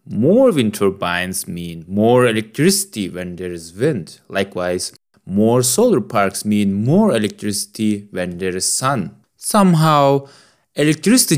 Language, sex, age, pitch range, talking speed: English, male, 20-39, 100-140 Hz, 120 wpm